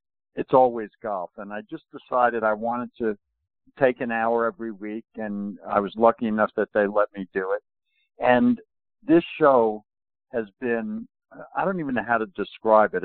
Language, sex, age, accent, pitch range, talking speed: English, male, 60-79, American, 110-140 Hz, 180 wpm